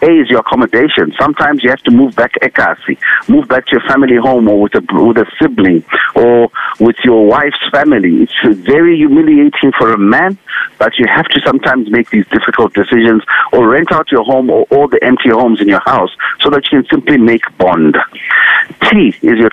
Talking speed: 205 wpm